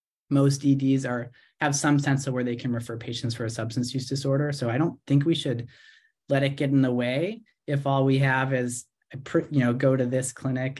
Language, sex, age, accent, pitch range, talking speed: English, male, 30-49, American, 120-140 Hz, 230 wpm